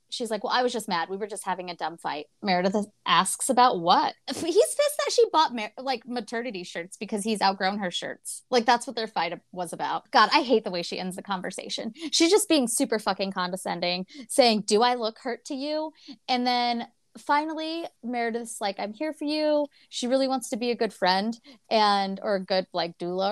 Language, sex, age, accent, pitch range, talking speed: English, female, 20-39, American, 180-245 Hz, 215 wpm